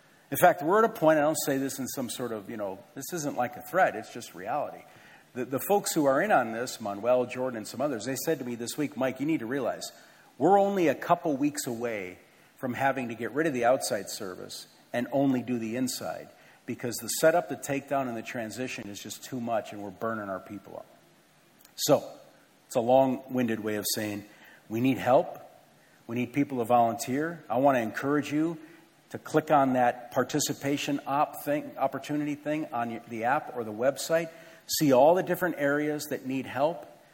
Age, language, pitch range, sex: 50-69, English, 120-150 Hz, male